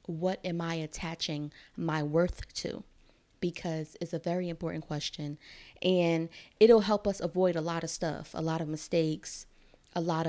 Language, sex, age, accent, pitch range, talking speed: English, female, 20-39, American, 160-195 Hz, 165 wpm